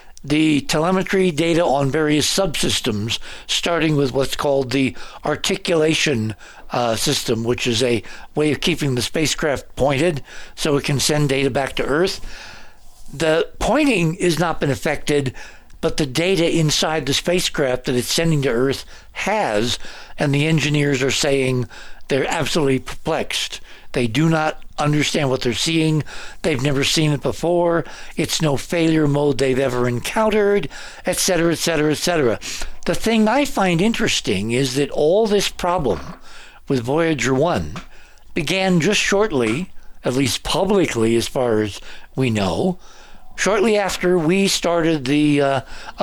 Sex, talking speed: male, 140 wpm